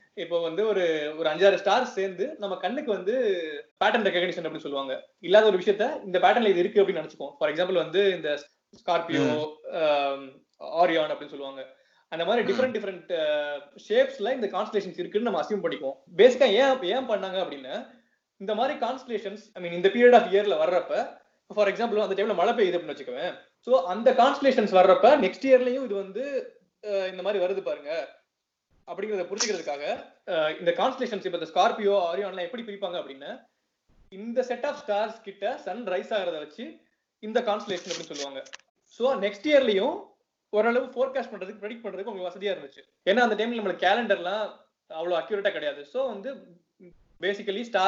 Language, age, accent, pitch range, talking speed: Tamil, 20-39, native, 175-235 Hz, 95 wpm